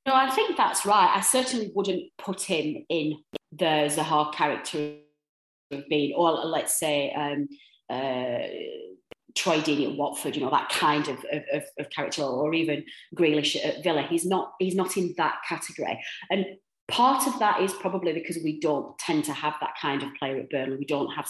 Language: English